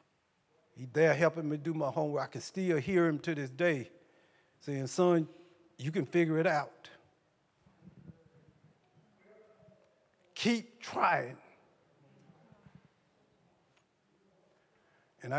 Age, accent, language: 50-69, American, English